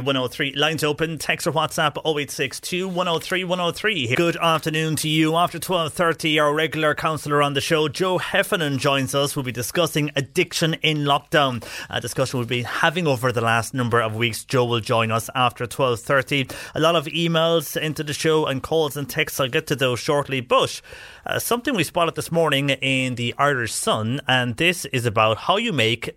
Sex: male